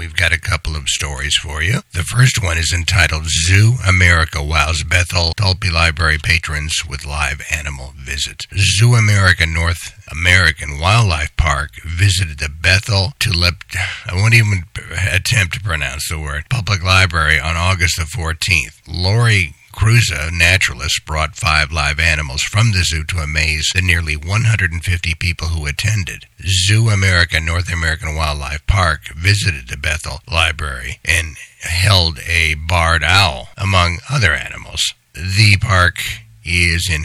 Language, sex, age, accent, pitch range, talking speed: English, male, 60-79, American, 80-95 Hz, 150 wpm